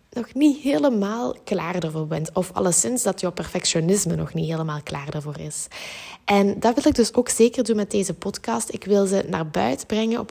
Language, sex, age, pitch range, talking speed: Dutch, female, 20-39, 170-215 Hz, 205 wpm